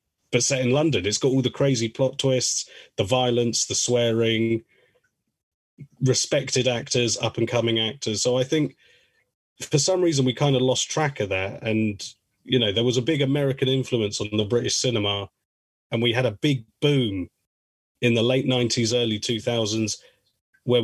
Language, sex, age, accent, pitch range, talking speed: English, male, 30-49, British, 110-130 Hz, 165 wpm